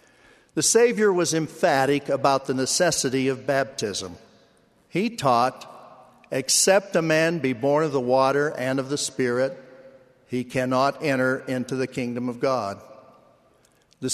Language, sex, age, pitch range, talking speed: English, male, 60-79, 130-155 Hz, 135 wpm